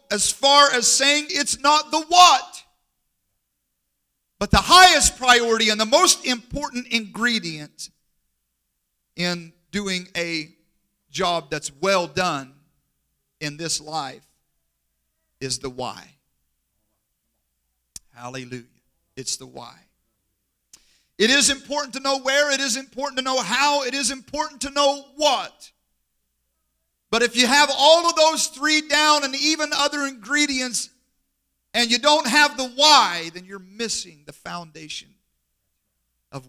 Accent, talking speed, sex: American, 125 wpm, male